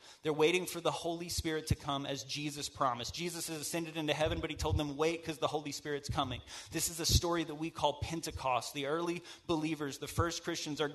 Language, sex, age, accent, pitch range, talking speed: English, male, 30-49, American, 145-170 Hz, 225 wpm